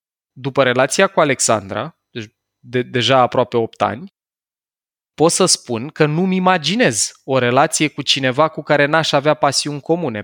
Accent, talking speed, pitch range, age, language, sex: native, 140 wpm, 125-165 Hz, 20-39, Romanian, male